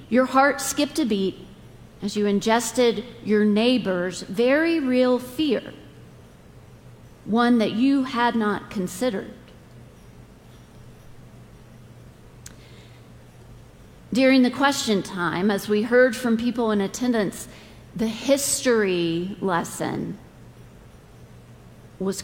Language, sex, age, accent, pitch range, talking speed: English, female, 40-59, American, 205-265 Hz, 90 wpm